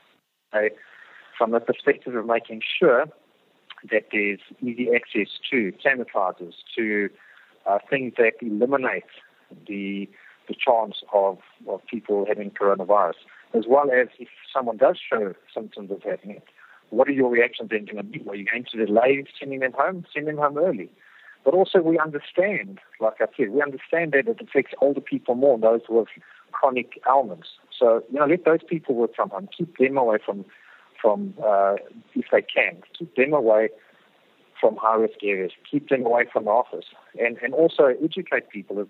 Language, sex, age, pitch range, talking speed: English, male, 50-69, 110-145 Hz, 170 wpm